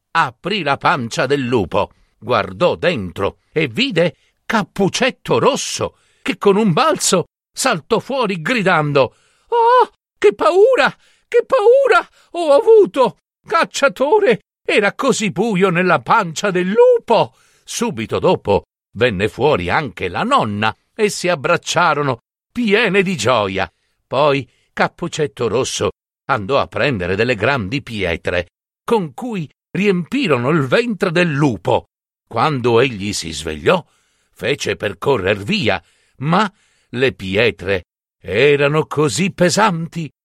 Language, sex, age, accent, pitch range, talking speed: Italian, male, 60-79, native, 135-220 Hz, 115 wpm